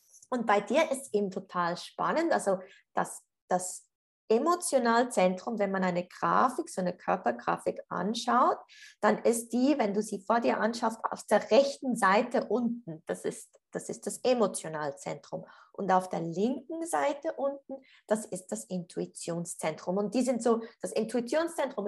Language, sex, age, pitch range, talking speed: German, female, 20-39, 200-275 Hz, 150 wpm